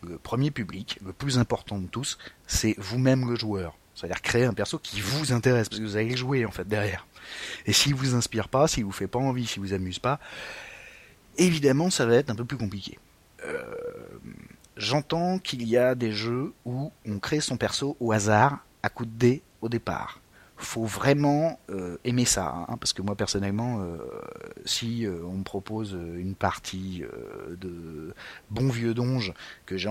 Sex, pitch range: male, 95-125 Hz